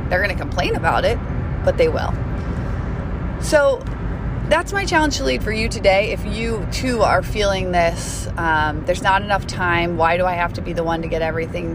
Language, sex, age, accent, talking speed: English, female, 30-49, American, 205 wpm